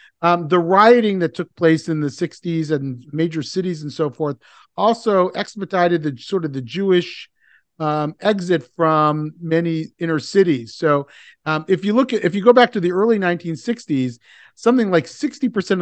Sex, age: male, 50-69